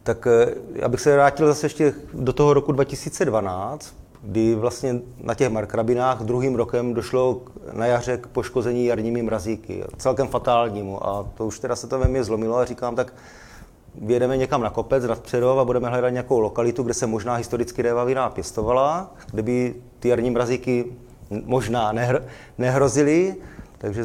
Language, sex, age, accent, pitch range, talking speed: Czech, male, 30-49, native, 115-130 Hz, 155 wpm